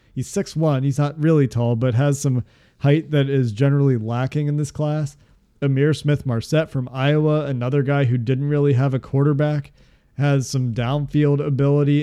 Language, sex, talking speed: English, male, 165 wpm